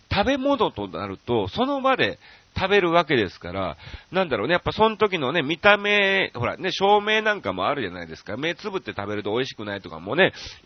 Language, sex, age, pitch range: Japanese, male, 40-59, 110-185 Hz